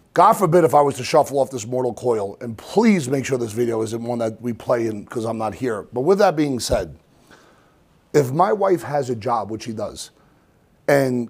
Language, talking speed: English, 225 wpm